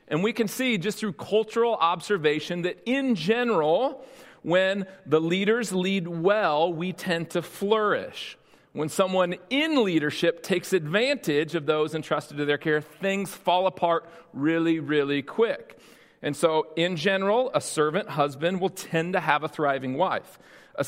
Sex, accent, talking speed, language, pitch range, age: male, American, 150 wpm, English, 150-205 Hz, 40-59